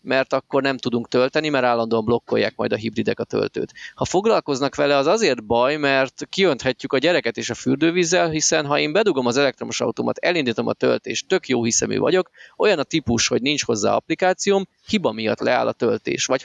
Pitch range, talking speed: 120-155 Hz, 195 wpm